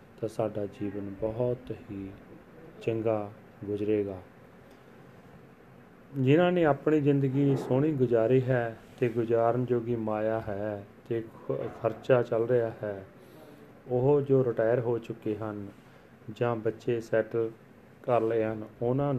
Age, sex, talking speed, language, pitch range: 30-49, male, 115 wpm, Punjabi, 105-120 Hz